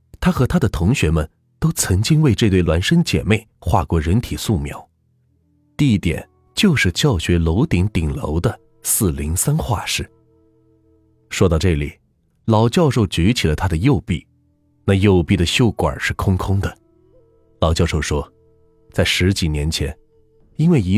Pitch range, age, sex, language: 85-110 Hz, 30-49, male, Chinese